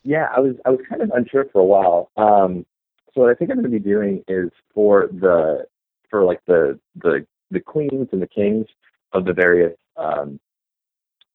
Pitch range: 85-120 Hz